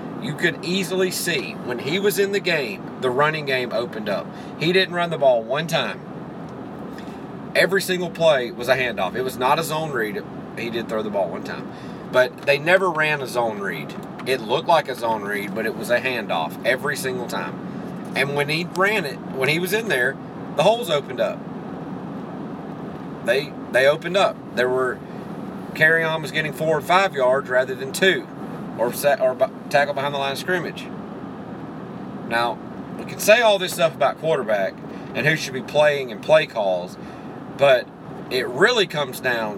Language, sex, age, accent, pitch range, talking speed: English, male, 30-49, American, 135-185 Hz, 185 wpm